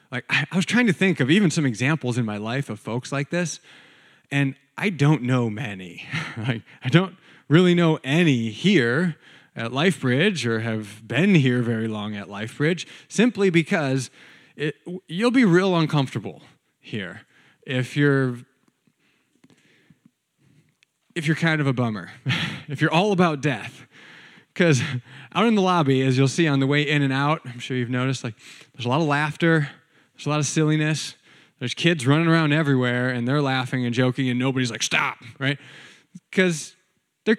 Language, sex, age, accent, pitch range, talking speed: English, male, 30-49, American, 125-170 Hz, 170 wpm